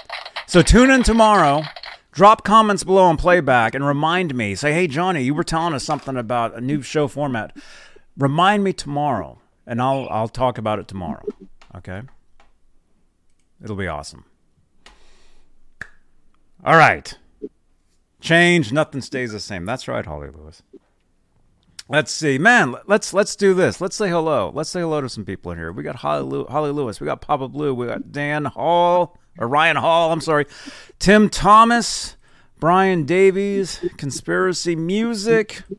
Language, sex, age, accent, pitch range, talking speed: English, male, 30-49, American, 115-175 Hz, 155 wpm